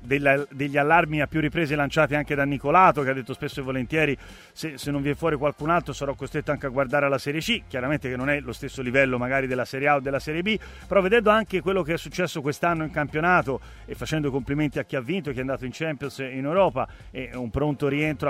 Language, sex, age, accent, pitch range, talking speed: Italian, male, 30-49, native, 140-175 Hz, 245 wpm